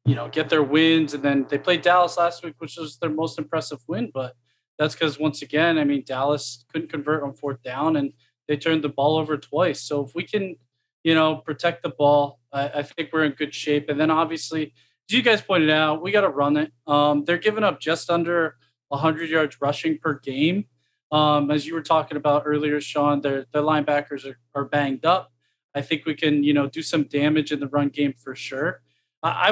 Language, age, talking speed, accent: English, 20-39, 220 wpm, American